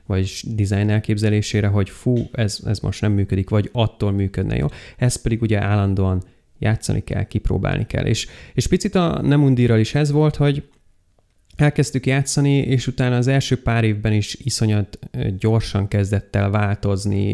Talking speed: 155 wpm